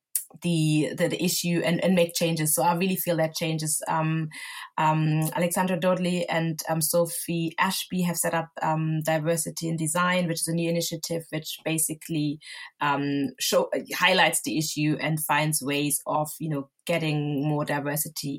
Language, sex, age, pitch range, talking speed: English, female, 20-39, 150-165 Hz, 165 wpm